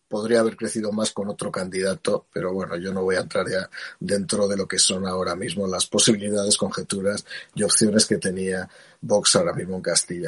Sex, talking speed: male, 200 wpm